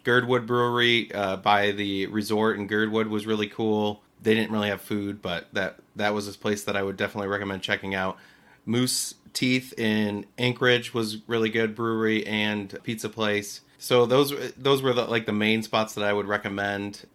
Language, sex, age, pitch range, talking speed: English, male, 30-49, 100-115 Hz, 185 wpm